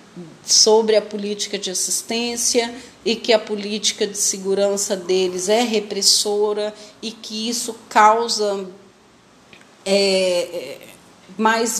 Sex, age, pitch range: female, 40-59, 200-230 Hz